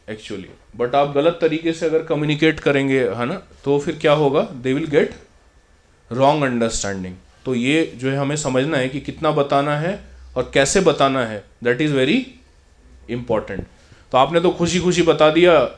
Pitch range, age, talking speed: 110-155 Hz, 20-39, 175 wpm